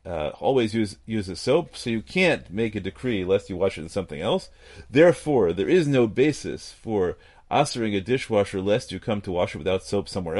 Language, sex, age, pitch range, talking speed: English, male, 40-59, 95-125 Hz, 210 wpm